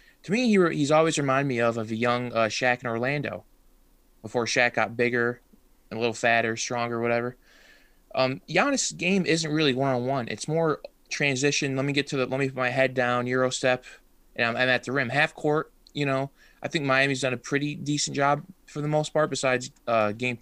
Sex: male